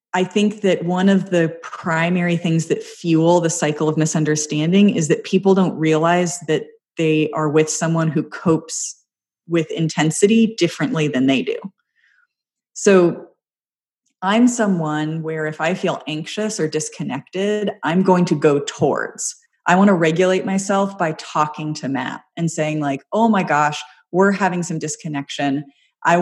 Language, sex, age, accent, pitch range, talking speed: English, female, 30-49, American, 155-200 Hz, 155 wpm